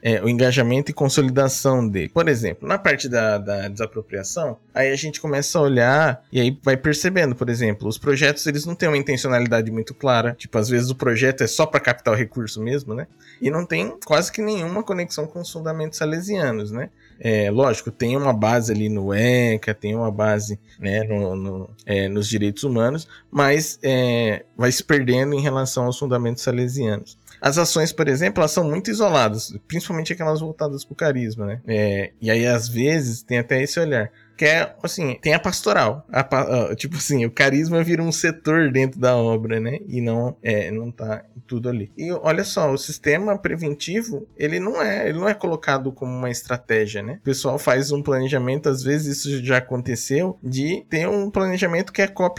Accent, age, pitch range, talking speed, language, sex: Brazilian, 20-39, 115-155 Hz, 195 wpm, Portuguese, male